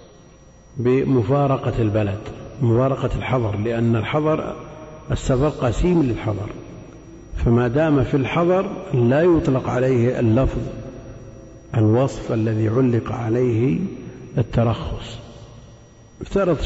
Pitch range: 115-135 Hz